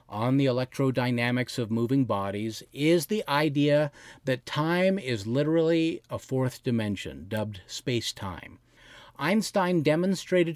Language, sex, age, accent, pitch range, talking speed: English, male, 50-69, American, 120-165 Hz, 115 wpm